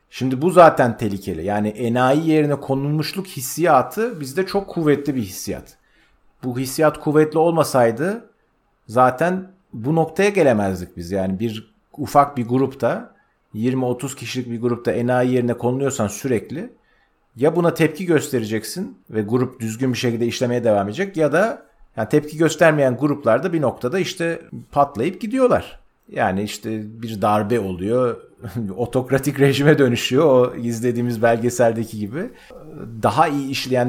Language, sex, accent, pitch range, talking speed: Turkish, male, native, 115-150 Hz, 130 wpm